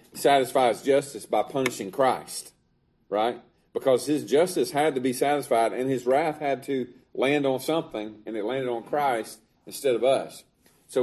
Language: English